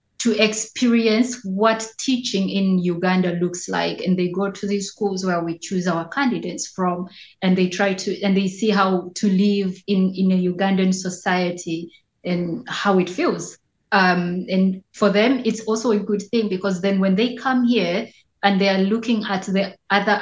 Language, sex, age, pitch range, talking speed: English, female, 20-39, 185-220 Hz, 180 wpm